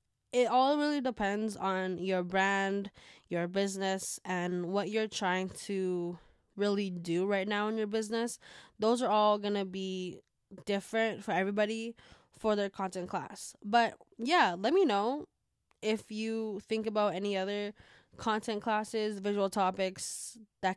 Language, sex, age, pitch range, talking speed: English, female, 10-29, 190-225 Hz, 140 wpm